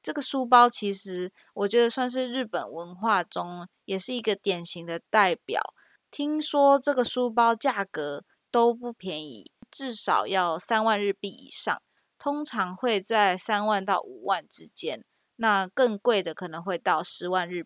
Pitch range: 185-240 Hz